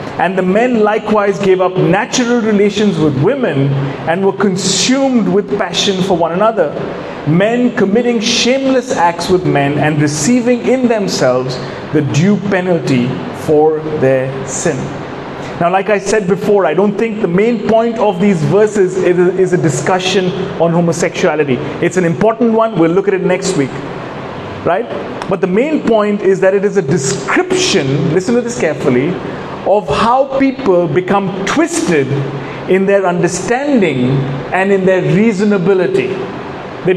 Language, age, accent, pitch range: English, 30-49, Indian, 180-220 Hz